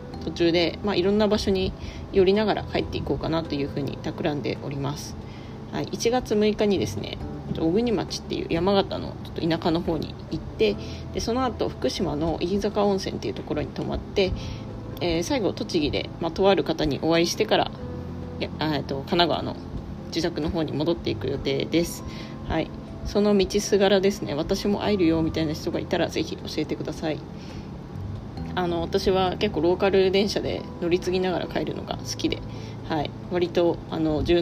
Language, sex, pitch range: Japanese, female, 130-190 Hz